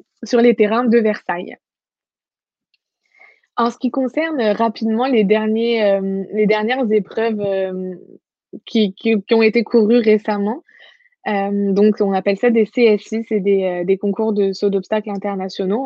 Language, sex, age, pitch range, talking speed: French, female, 20-39, 200-235 Hz, 150 wpm